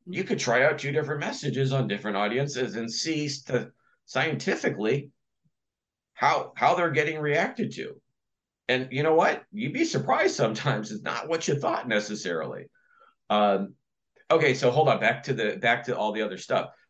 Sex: male